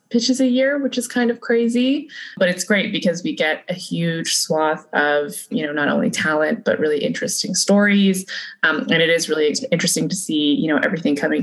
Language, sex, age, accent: English, female, 20-39, American